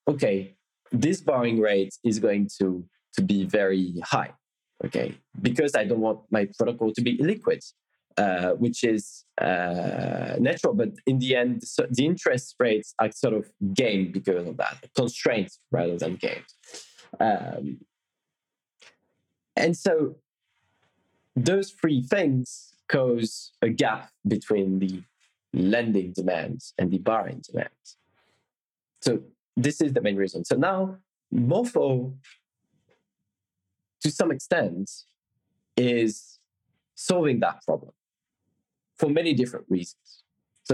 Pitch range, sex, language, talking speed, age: 95-135 Hz, male, English, 120 wpm, 20-39